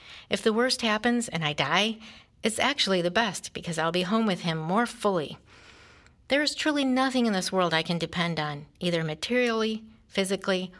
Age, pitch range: 50-69, 165-220 Hz